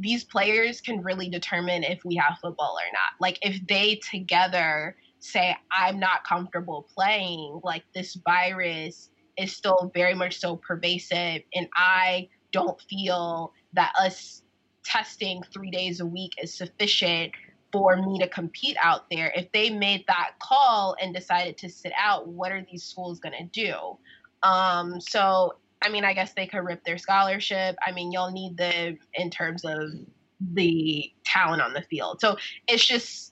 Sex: female